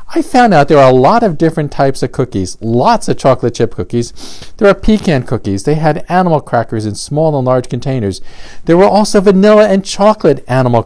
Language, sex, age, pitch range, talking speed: English, male, 50-69, 100-135 Hz, 205 wpm